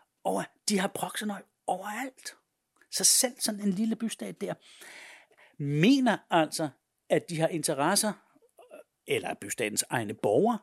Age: 60-79